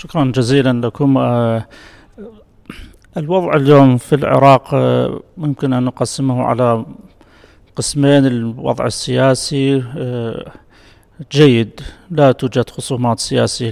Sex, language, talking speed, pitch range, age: male, English, 85 wpm, 125-140 Hz, 30-49